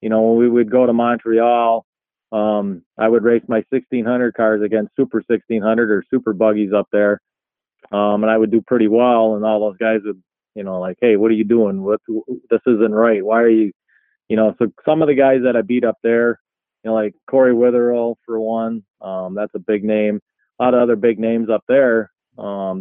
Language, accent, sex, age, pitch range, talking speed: English, American, male, 30-49, 110-125 Hz, 220 wpm